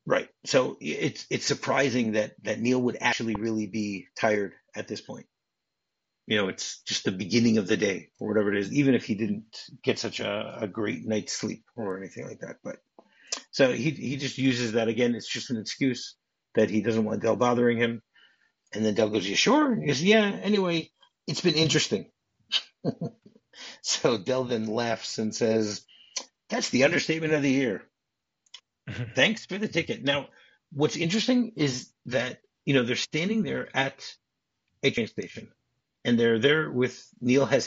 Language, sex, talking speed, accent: English, male, 180 wpm, American